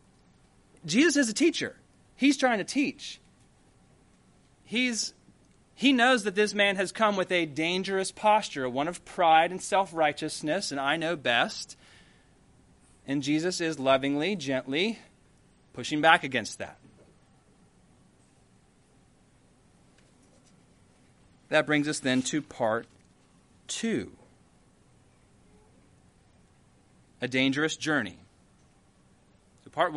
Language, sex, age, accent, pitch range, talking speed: English, male, 30-49, American, 155-210 Hz, 100 wpm